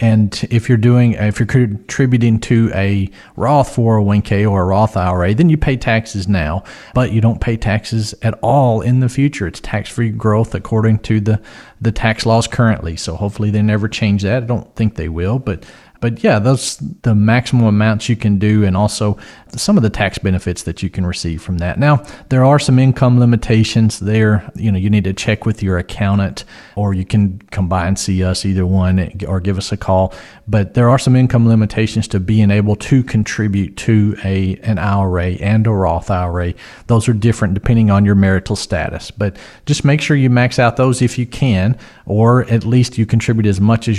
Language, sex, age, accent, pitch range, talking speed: English, male, 40-59, American, 100-120 Hz, 205 wpm